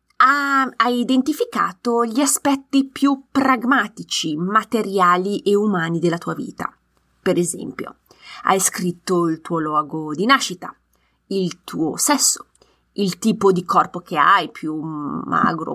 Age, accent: 30-49, native